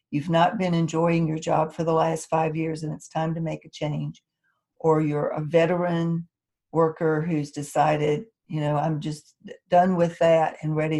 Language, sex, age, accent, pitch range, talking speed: English, female, 60-79, American, 150-185 Hz, 185 wpm